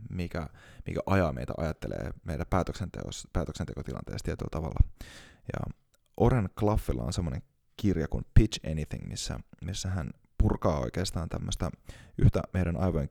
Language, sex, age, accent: Finnish, male, 20-39, native